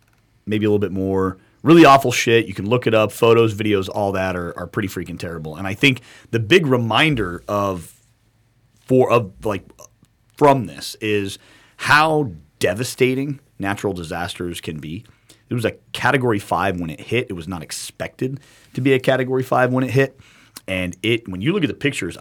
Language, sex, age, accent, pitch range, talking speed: English, male, 30-49, American, 95-125 Hz, 185 wpm